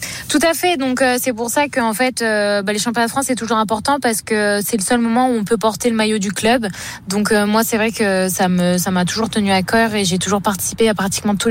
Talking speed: 285 wpm